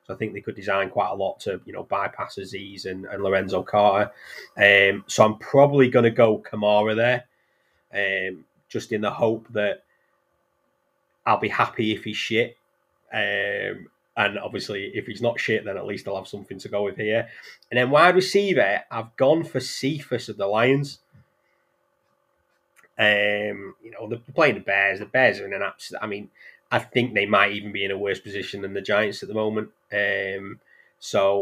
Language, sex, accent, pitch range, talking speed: English, male, British, 100-125 Hz, 190 wpm